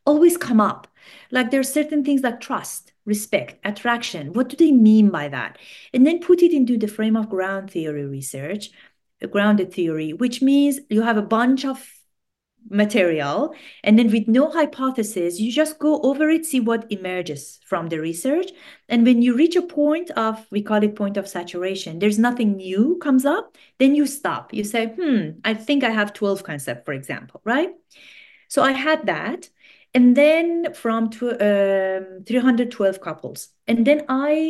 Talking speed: 175 wpm